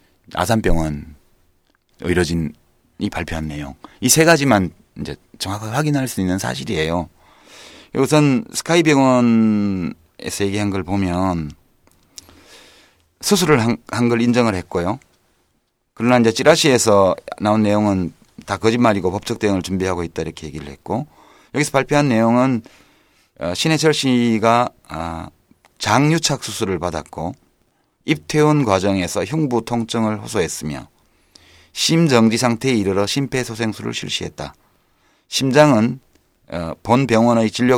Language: Korean